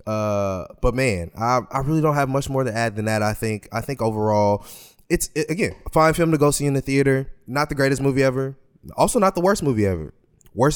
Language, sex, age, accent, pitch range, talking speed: English, male, 20-39, American, 110-140 Hz, 235 wpm